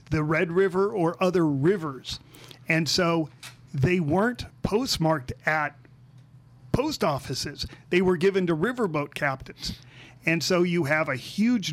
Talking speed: 135 wpm